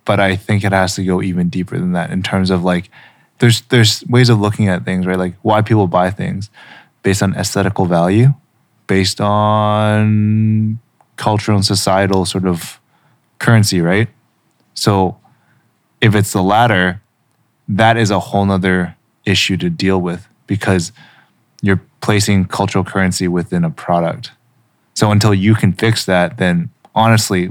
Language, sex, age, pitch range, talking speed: English, male, 20-39, 95-110 Hz, 155 wpm